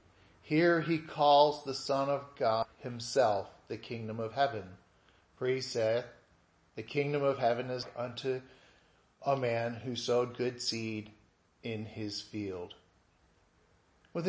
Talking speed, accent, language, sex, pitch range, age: 130 wpm, American, English, male, 120-160 Hz, 40-59